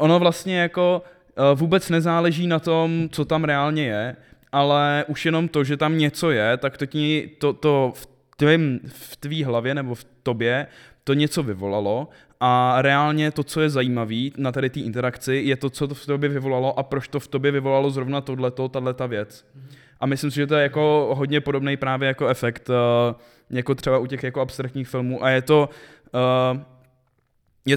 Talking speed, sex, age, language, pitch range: 180 wpm, male, 20-39, Czech, 125-145 Hz